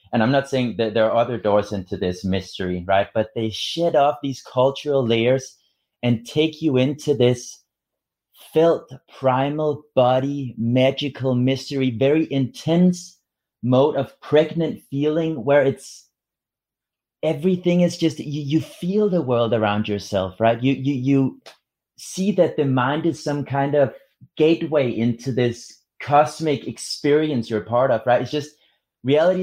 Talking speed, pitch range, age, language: 150 wpm, 110-145 Hz, 30-49, English